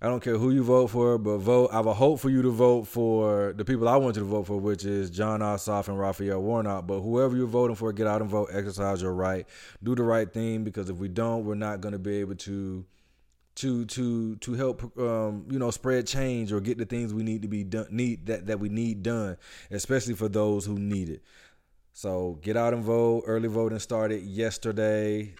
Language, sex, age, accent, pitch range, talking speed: English, male, 20-39, American, 95-110 Hz, 235 wpm